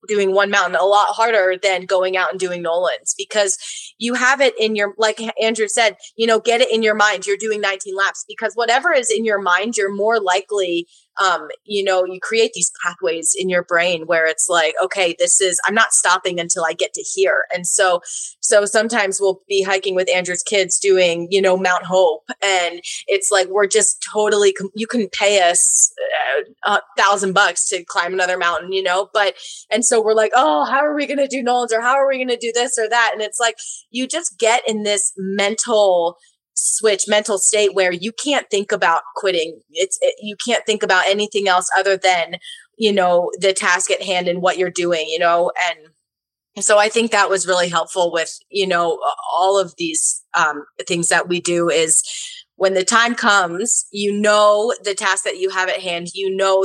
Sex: female